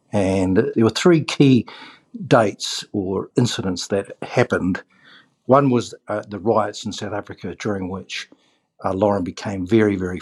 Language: English